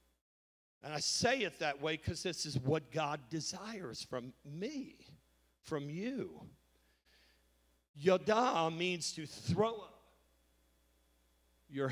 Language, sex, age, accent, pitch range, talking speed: English, male, 50-69, American, 110-165 Hz, 110 wpm